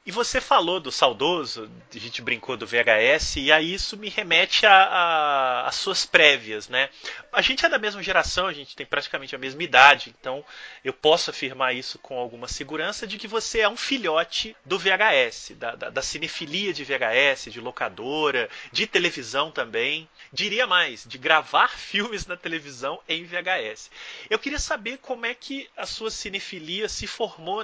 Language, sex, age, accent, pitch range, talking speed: Portuguese, male, 30-49, Brazilian, 155-220 Hz, 170 wpm